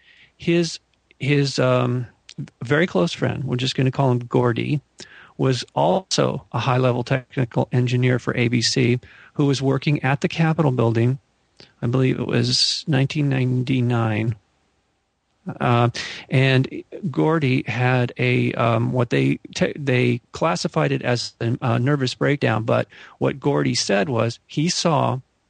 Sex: male